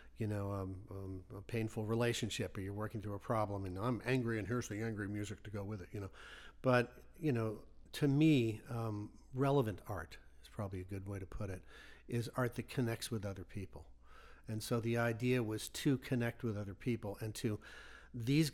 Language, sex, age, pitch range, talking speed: English, male, 50-69, 100-120 Hz, 205 wpm